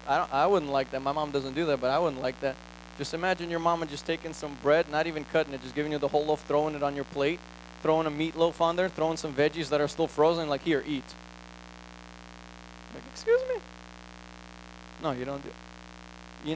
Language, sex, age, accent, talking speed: English, male, 20-39, American, 230 wpm